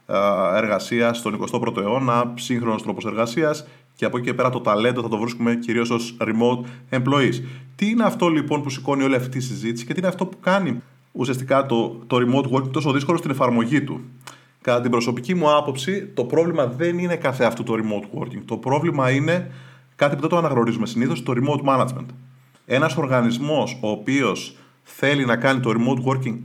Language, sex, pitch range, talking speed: Greek, male, 115-140 Hz, 185 wpm